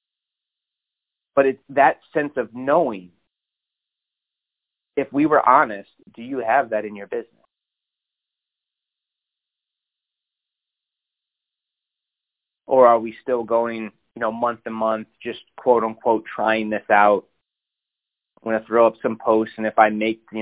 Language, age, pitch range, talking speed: English, 30-49, 110-120 Hz, 130 wpm